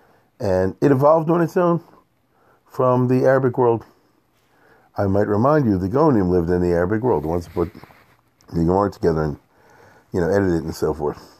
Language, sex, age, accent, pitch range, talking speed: English, male, 50-69, American, 90-125 Hz, 180 wpm